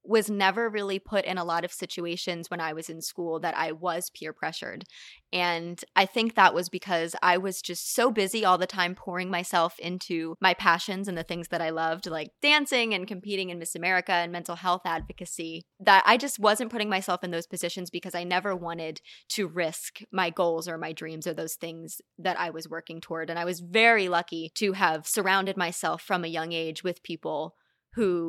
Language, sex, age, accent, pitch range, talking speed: English, female, 20-39, American, 165-190 Hz, 210 wpm